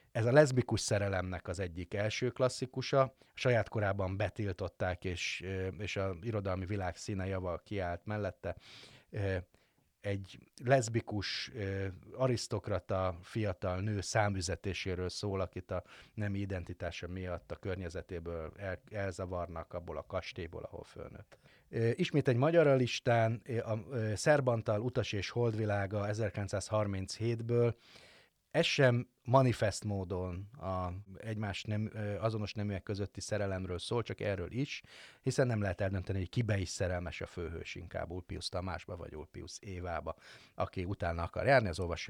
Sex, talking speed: male, 125 wpm